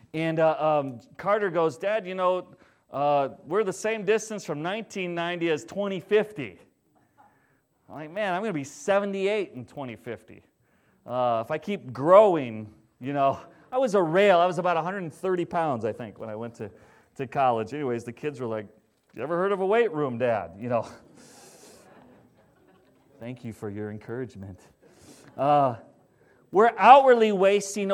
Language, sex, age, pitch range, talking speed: English, male, 40-59, 125-195 Hz, 160 wpm